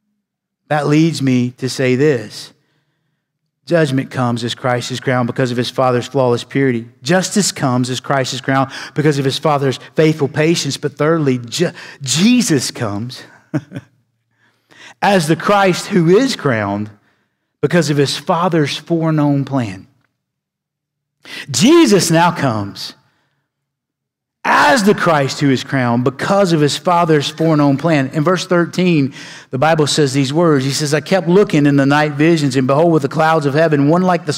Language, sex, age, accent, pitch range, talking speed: English, male, 50-69, American, 140-175 Hz, 155 wpm